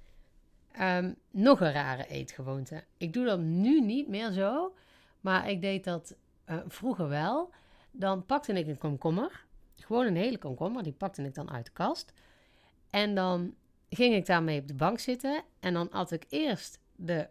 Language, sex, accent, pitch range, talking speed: Dutch, female, Dutch, 155-205 Hz, 175 wpm